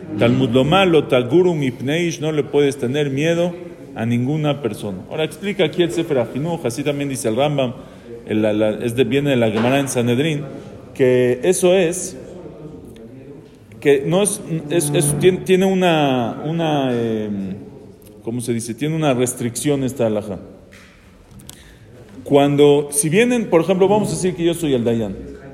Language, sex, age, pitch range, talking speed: English, male, 40-59, 125-180 Hz, 155 wpm